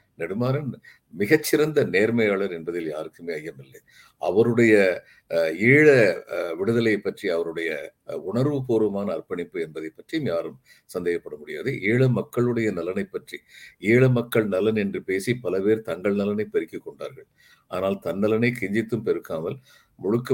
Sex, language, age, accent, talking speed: male, Tamil, 50-69, native, 110 wpm